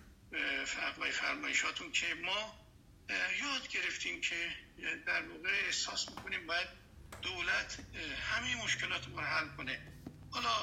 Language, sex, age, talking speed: Persian, male, 50-69, 115 wpm